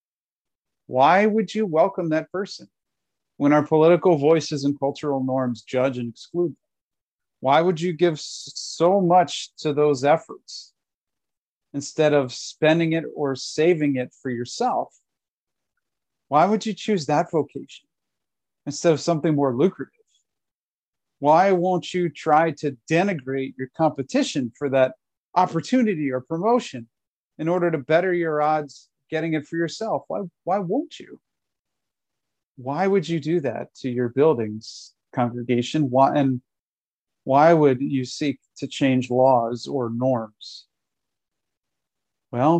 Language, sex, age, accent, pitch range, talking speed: English, male, 40-59, American, 135-175 Hz, 130 wpm